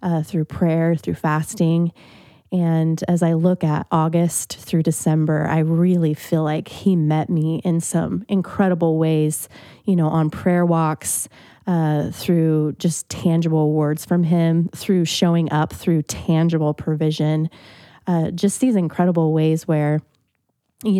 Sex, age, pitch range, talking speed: female, 20-39, 155-175 Hz, 140 wpm